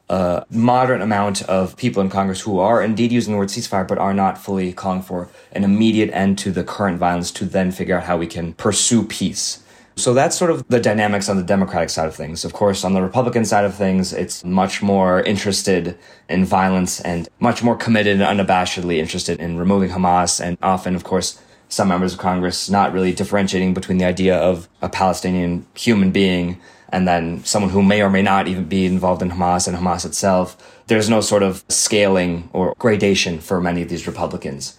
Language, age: English, 20-39